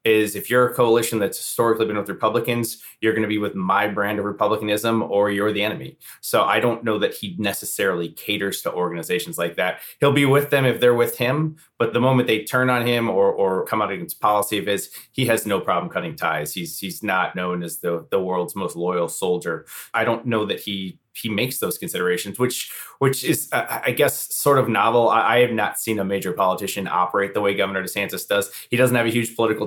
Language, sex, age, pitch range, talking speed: English, male, 30-49, 100-120 Hz, 225 wpm